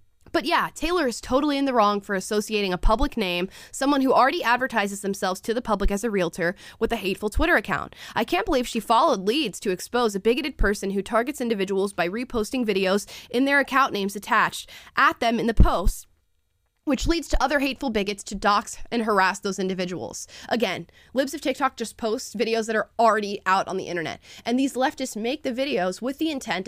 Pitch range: 190-255 Hz